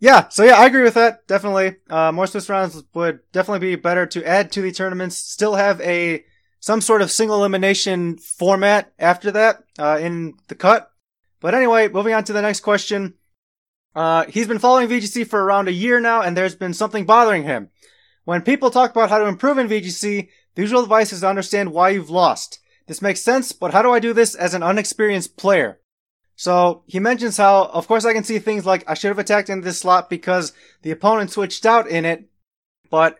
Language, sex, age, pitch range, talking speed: English, male, 20-39, 180-220 Hz, 210 wpm